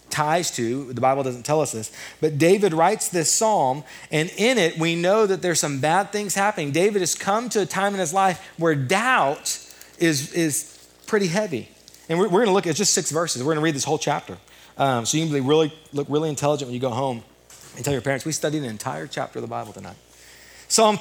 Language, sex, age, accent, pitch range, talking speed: English, male, 30-49, American, 145-235 Hz, 235 wpm